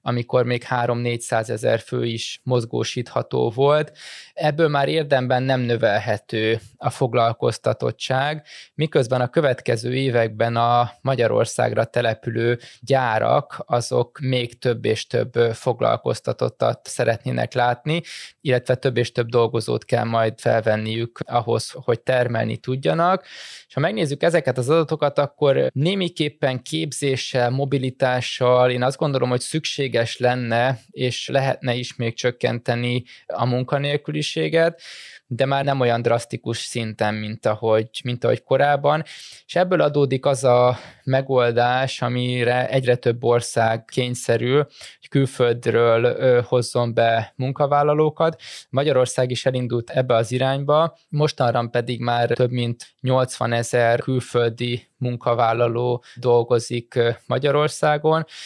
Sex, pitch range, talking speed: male, 120-140 Hz, 115 wpm